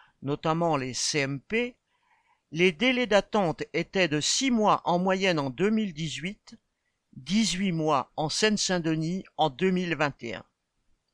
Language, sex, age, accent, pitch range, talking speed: French, male, 50-69, French, 165-210 Hz, 110 wpm